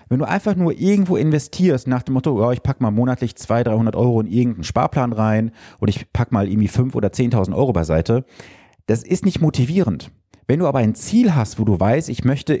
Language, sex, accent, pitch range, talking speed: German, male, German, 110-150 Hz, 220 wpm